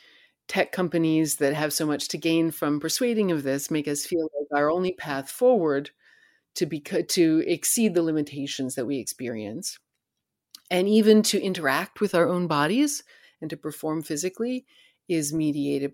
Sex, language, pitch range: female, English, 145-205 Hz